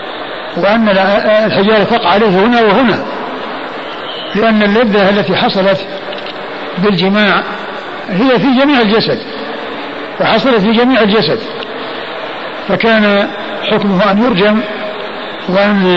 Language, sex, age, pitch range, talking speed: Arabic, male, 50-69, 190-215 Hz, 90 wpm